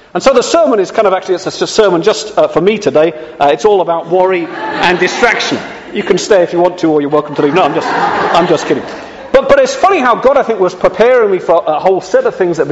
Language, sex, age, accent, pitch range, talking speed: English, male, 40-59, British, 165-225 Hz, 285 wpm